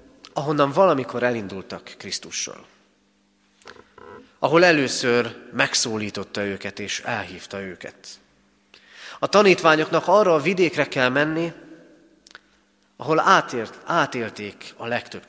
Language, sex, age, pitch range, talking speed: Hungarian, male, 40-59, 100-150 Hz, 85 wpm